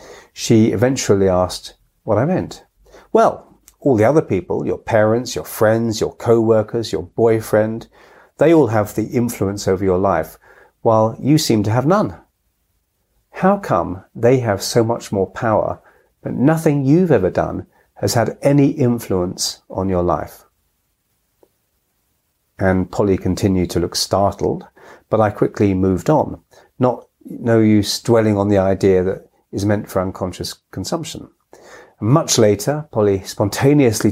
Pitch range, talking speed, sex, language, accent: 95-115 Hz, 140 wpm, male, English, British